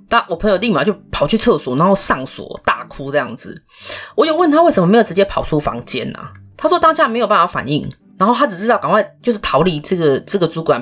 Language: Chinese